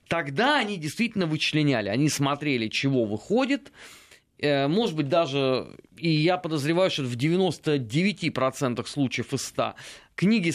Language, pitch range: Russian, 140-215 Hz